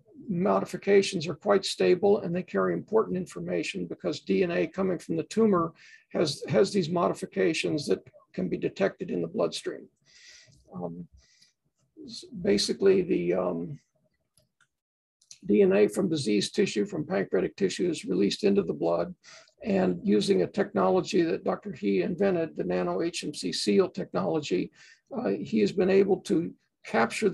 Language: English